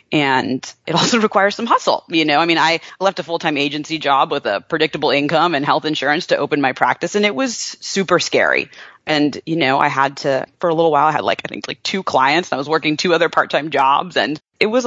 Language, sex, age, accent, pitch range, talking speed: English, female, 30-49, American, 140-180 Hz, 245 wpm